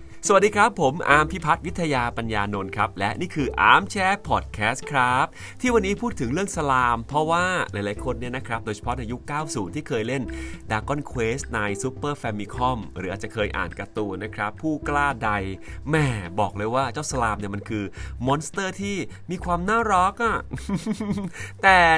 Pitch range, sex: 100-145 Hz, male